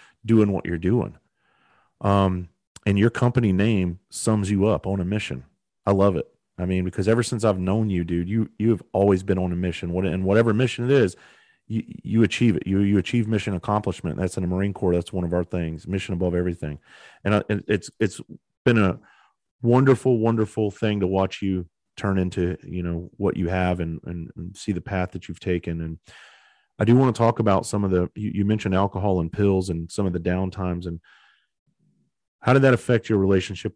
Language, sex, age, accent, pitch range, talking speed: English, male, 30-49, American, 90-110 Hz, 210 wpm